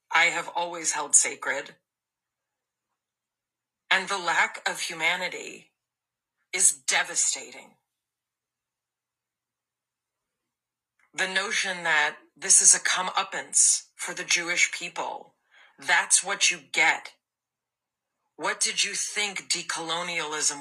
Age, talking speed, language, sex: 40-59, 95 wpm, English, female